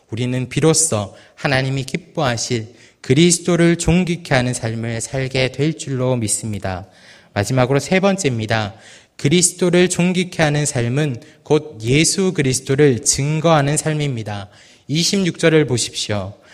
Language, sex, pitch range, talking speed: English, male, 130-175 Hz, 95 wpm